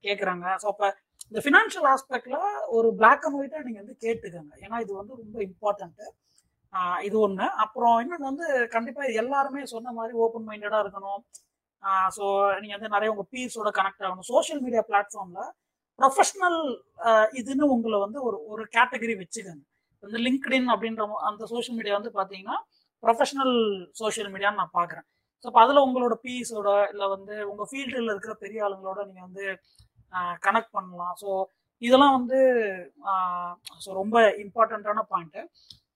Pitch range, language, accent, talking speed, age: 200-255 Hz, Tamil, native, 95 wpm, 20-39